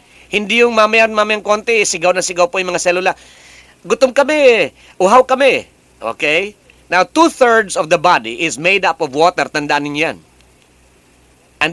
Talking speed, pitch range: 155 wpm, 150-210 Hz